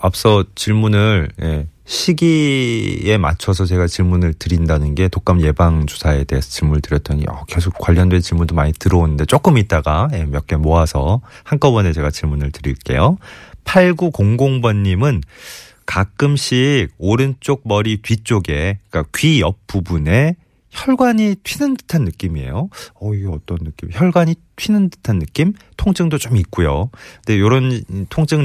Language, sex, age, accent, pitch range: Korean, male, 30-49, native, 85-140 Hz